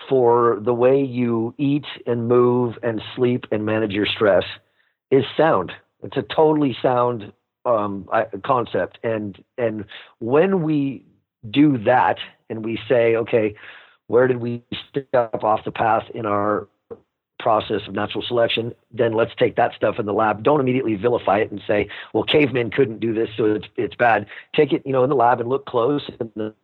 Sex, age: male, 40-59